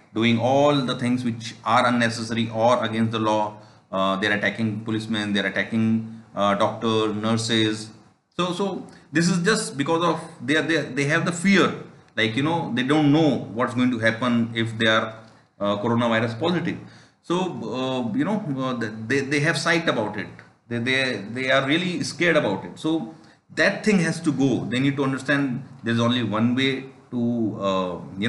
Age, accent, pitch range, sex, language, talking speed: 40-59, Indian, 115-150 Hz, male, English, 190 wpm